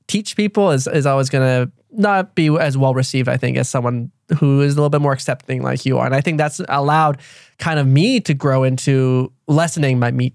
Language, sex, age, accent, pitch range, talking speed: English, male, 10-29, American, 130-160 Hz, 225 wpm